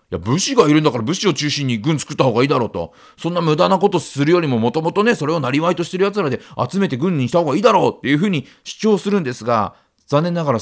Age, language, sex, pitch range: 40-59, Japanese, male, 120-180 Hz